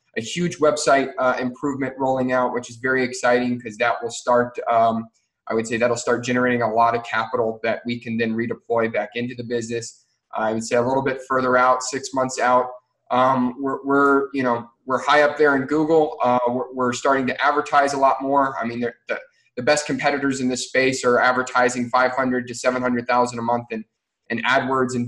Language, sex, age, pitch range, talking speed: English, male, 20-39, 120-140 Hz, 210 wpm